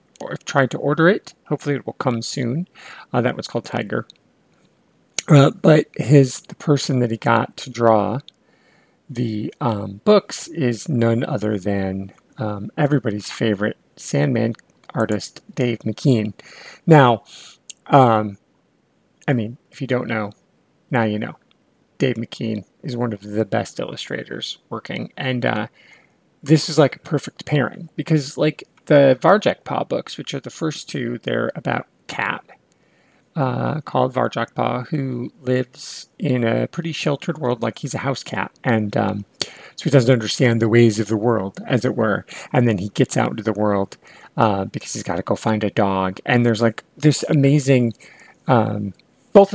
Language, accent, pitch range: English, American, 110-145 Hz